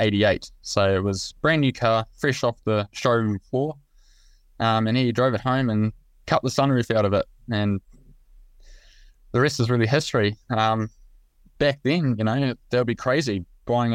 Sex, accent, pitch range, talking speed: male, Australian, 105-125 Hz, 175 wpm